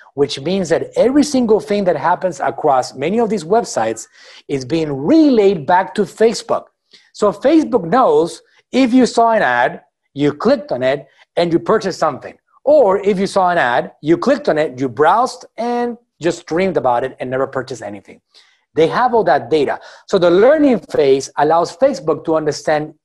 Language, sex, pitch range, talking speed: English, male, 155-235 Hz, 180 wpm